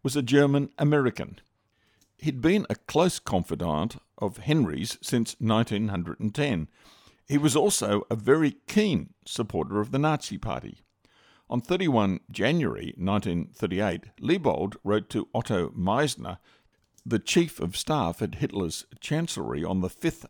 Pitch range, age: 105-150 Hz, 50-69